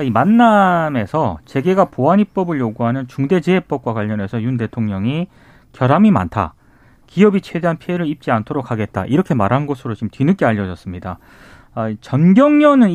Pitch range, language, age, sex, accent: 115-180 Hz, Korean, 30-49, male, native